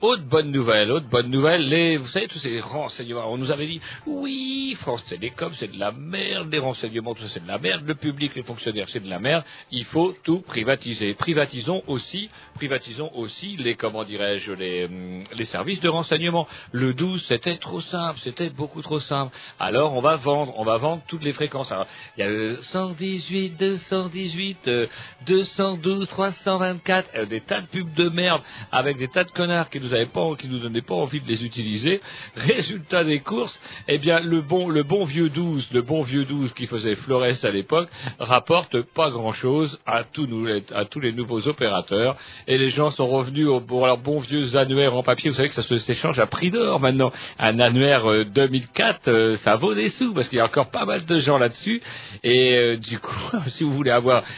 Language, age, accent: French, 50-69, French